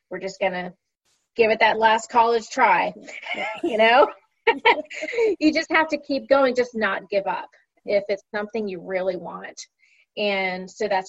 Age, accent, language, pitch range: 30-49, American, English, 195-260 Hz